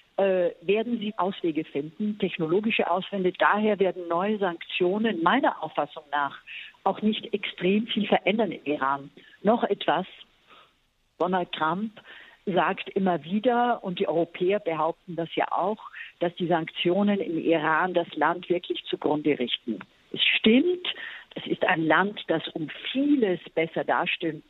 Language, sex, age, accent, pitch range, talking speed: German, female, 50-69, German, 170-210 Hz, 135 wpm